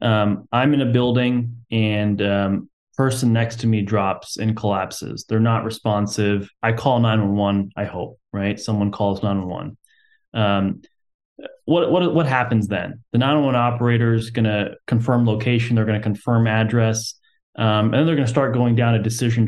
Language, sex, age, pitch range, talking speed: English, male, 20-39, 110-130 Hz, 175 wpm